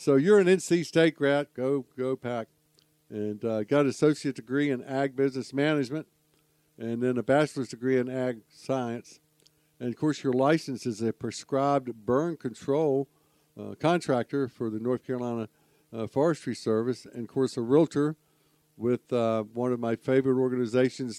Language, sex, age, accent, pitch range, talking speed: English, male, 60-79, American, 110-140 Hz, 165 wpm